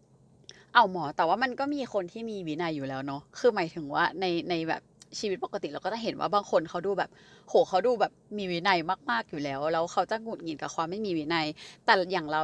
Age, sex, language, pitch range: 20-39, female, Thai, 170-245 Hz